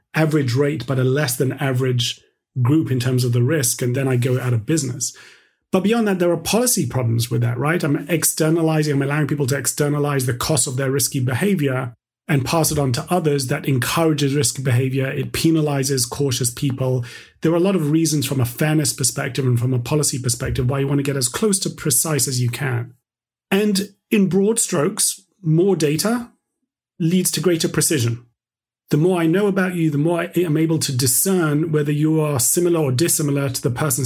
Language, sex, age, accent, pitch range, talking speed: English, male, 30-49, British, 130-160 Hz, 205 wpm